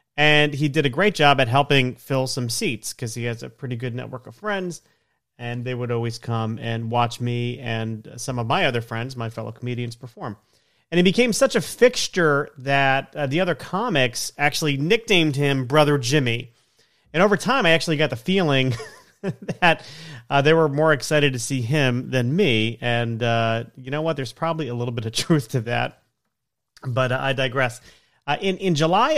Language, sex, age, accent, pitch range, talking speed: English, male, 30-49, American, 120-155 Hz, 195 wpm